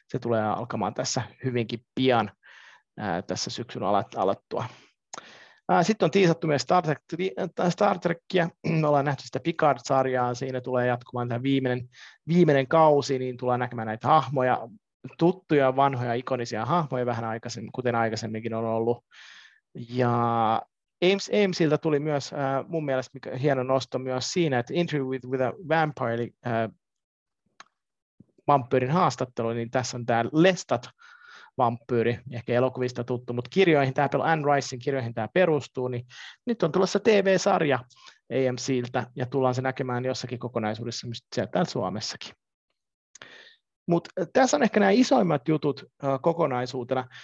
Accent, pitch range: native, 125-165 Hz